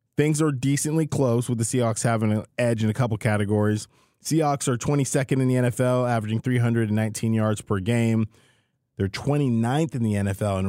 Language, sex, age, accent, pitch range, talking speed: English, male, 20-39, American, 105-130 Hz, 175 wpm